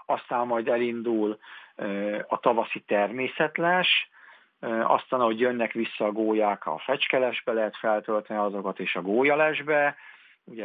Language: Hungarian